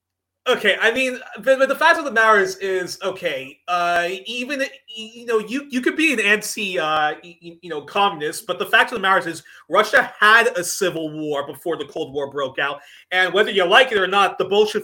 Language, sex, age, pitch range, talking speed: English, male, 30-49, 175-220 Hz, 210 wpm